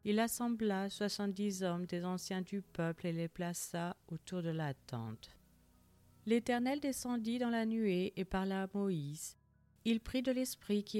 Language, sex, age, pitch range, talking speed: French, female, 40-59, 170-215 Hz, 160 wpm